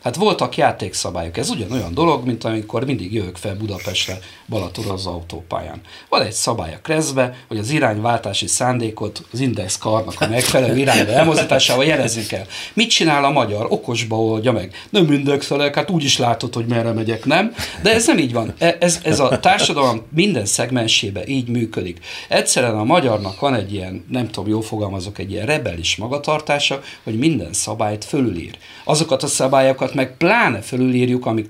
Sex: male